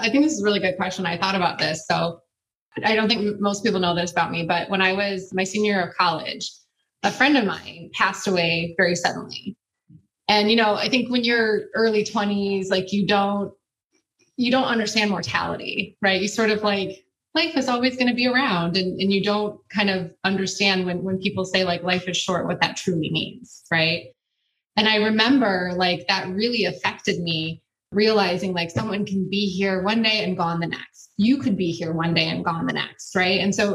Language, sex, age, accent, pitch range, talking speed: English, female, 20-39, American, 175-210 Hz, 215 wpm